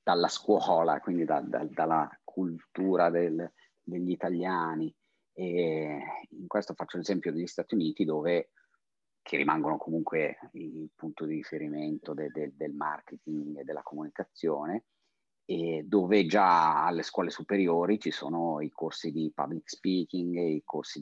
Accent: native